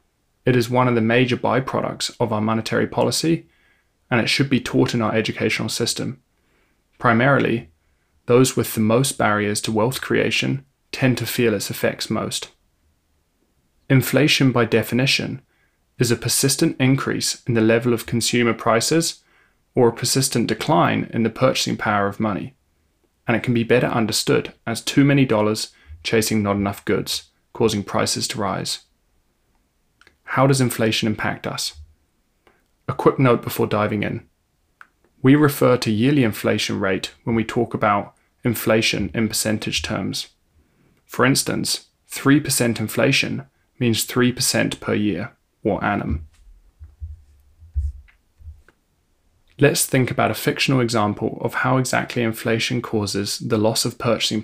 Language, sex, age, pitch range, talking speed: English, male, 20-39, 100-125 Hz, 140 wpm